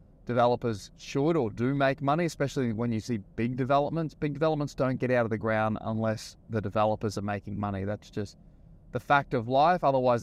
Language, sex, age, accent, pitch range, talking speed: English, male, 20-39, Australian, 110-140 Hz, 195 wpm